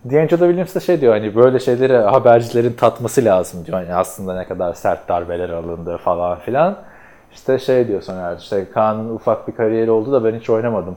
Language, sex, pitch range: Turkish, male, 105-140 Hz